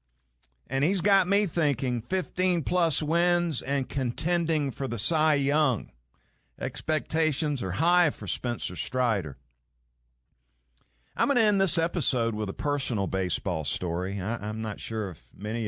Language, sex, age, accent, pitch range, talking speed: English, male, 50-69, American, 85-130 Hz, 135 wpm